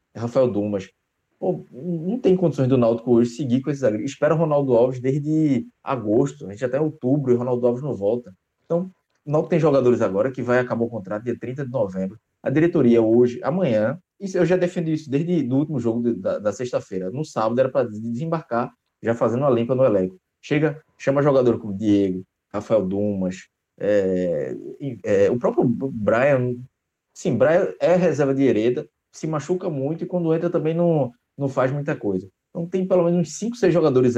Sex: male